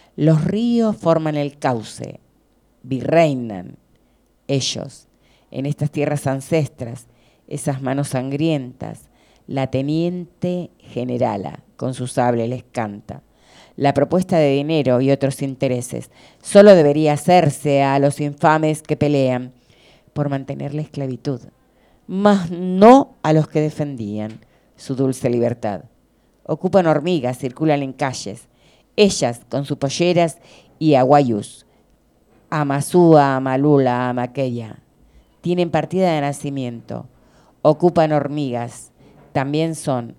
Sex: female